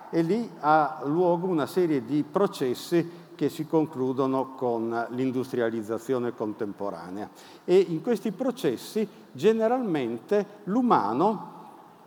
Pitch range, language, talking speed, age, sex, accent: 145-205 Hz, Italian, 100 wpm, 50-69, male, native